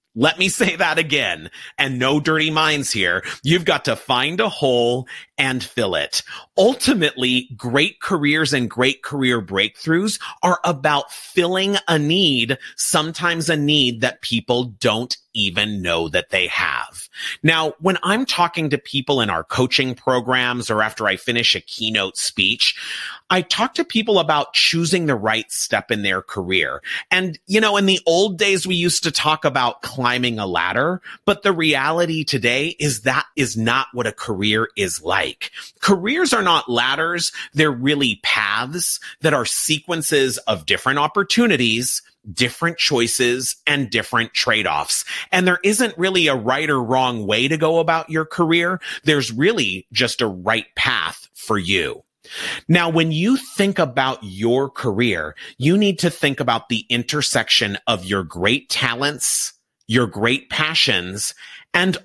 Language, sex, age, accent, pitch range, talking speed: English, male, 30-49, American, 120-170 Hz, 155 wpm